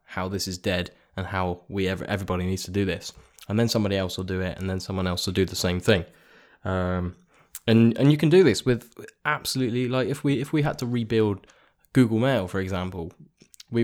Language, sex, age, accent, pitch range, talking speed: English, male, 10-29, British, 95-115 Hz, 215 wpm